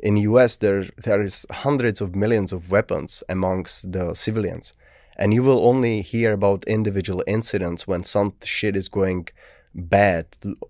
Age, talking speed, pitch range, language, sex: 30-49, 150 wpm, 95-115 Hz, Czech, male